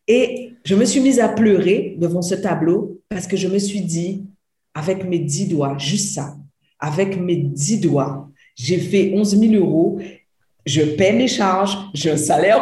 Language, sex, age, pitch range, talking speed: French, female, 50-69, 185-240 Hz, 180 wpm